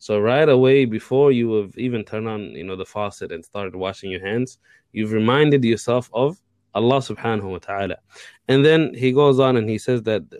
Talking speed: 200 wpm